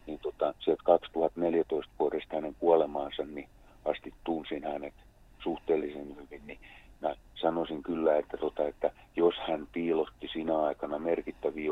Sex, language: male, English